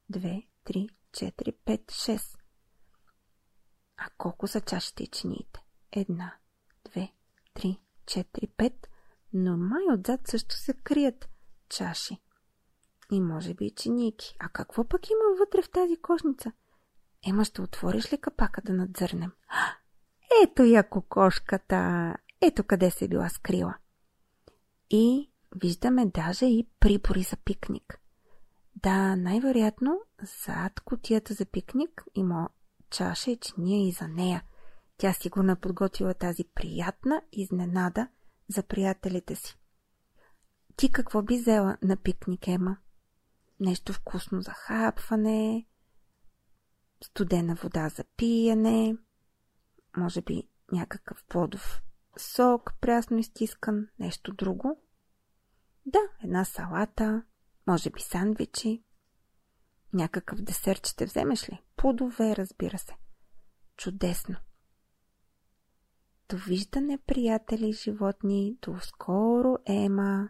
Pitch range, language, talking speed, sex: 185-230 Hz, Bulgarian, 105 wpm, female